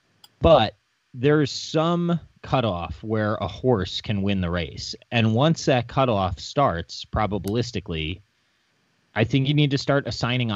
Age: 30-49